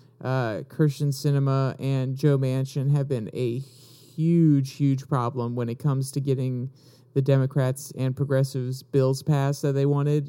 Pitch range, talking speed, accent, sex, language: 135-160 Hz, 150 wpm, American, male, English